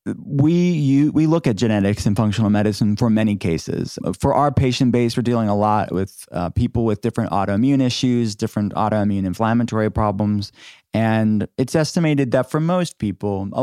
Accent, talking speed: American, 170 wpm